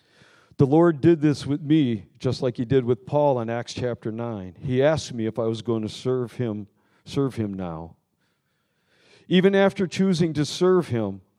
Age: 50-69